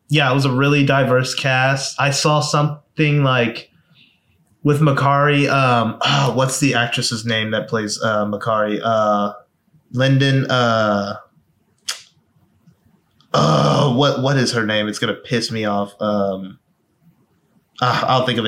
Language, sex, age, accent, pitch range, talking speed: English, male, 20-39, American, 115-140 Hz, 135 wpm